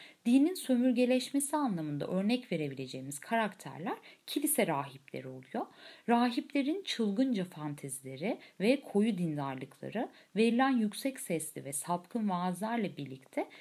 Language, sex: Turkish, female